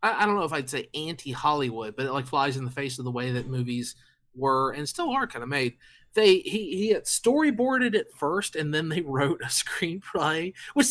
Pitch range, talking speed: 130-170 Hz, 220 wpm